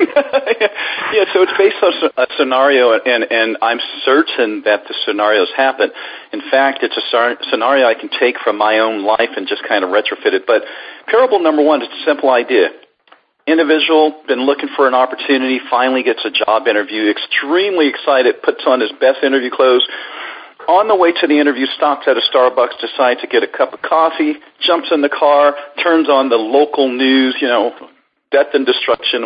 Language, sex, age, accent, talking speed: English, male, 50-69, American, 185 wpm